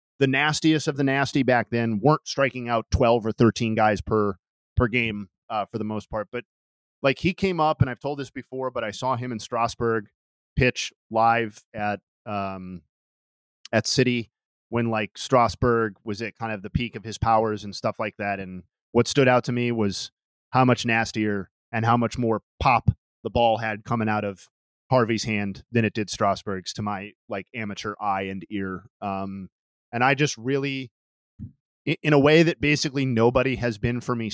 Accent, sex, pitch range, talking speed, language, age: American, male, 105-125 Hz, 190 wpm, English, 30-49